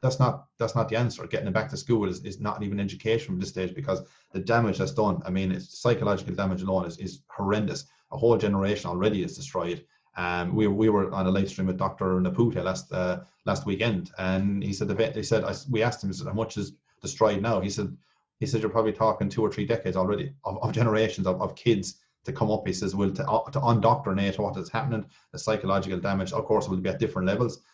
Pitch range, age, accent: 95-115 Hz, 30-49, Irish